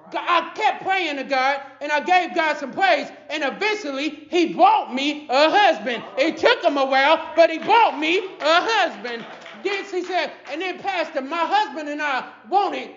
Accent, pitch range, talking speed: American, 290-370 Hz, 185 wpm